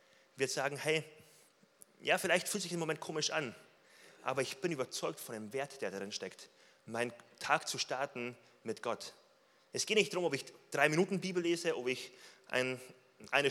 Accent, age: German, 30-49